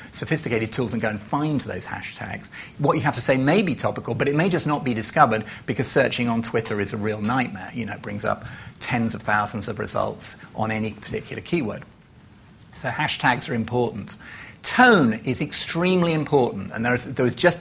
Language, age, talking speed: English, 40-59, 200 wpm